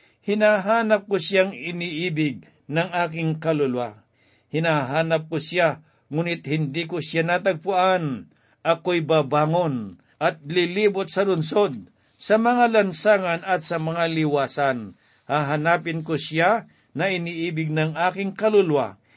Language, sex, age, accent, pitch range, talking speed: Filipino, male, 60-79, native, 145-185 Hz, 115 wpm